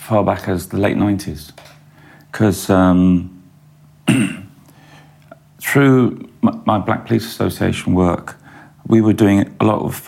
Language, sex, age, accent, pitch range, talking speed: English, male, 40-59, British, 95-140 Hz, 125 wpm